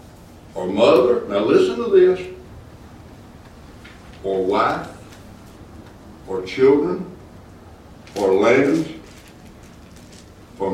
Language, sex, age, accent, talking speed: English, male, 60-79, American, 75 wpm